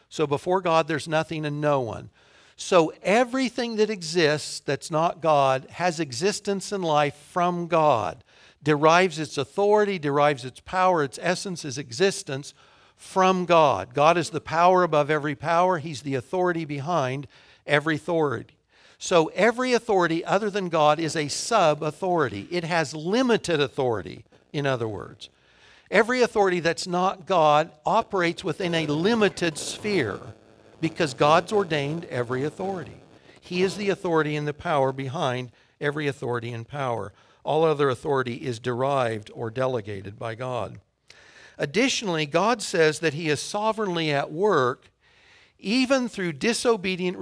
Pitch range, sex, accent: 145-185 Hz, male, American